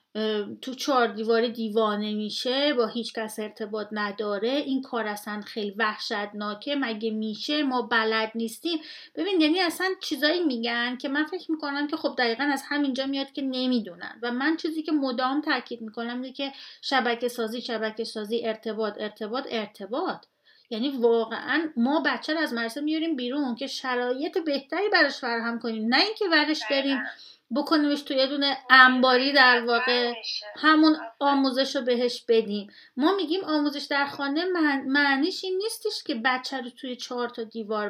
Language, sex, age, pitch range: Persian, female, 30-49, 230-295 Hz